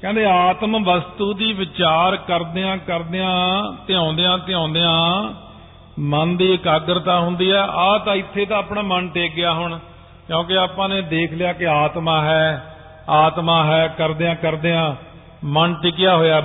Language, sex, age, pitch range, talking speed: Punjabi, male, 50-69, 160-195 Hz, 160 wpm